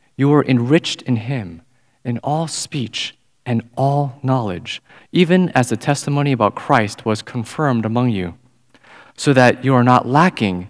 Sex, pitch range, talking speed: male, 110-140 Hz, 150 wpm